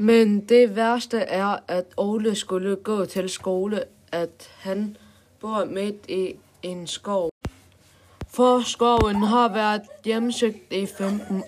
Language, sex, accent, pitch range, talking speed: Danish, female, native, 190-225 Hz, 125 wpm